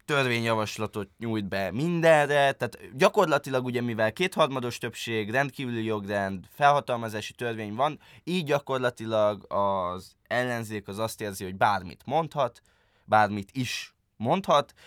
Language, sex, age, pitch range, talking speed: Hungarian, male, 20-39, 105-155 Hz, 115 wpm